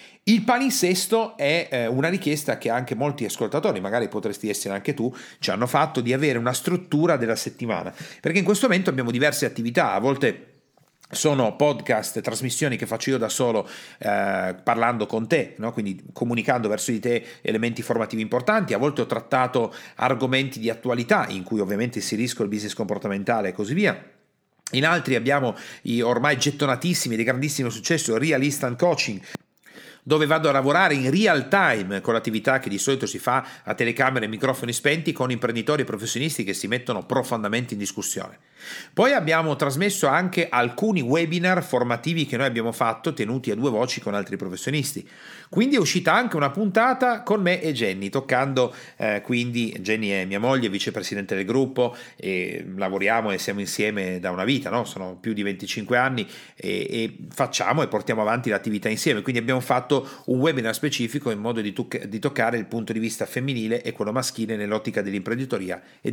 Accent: native